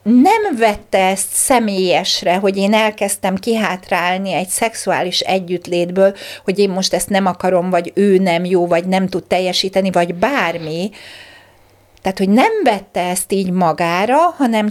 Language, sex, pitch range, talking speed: Hungarian, female, 180-230 Hz, 145 wpm